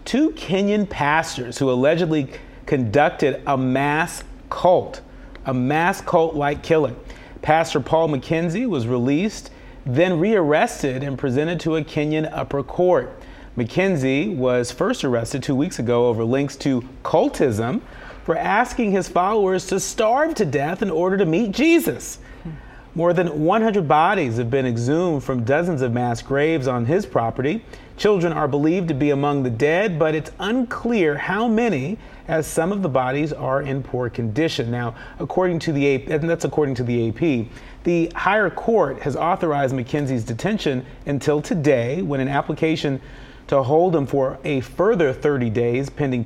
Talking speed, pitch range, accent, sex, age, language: 155 wpm, 130-165 Hz, American, male, 40-59, English